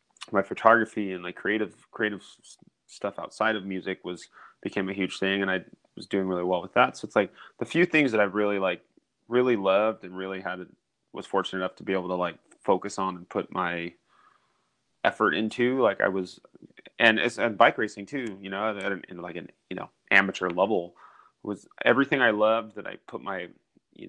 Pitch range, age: 95-110 Hz, 30-49